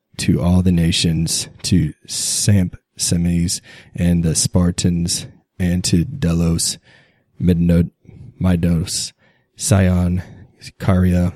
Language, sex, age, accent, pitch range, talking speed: English, male, 20-39, American, 85-95 Hz, 80 wpm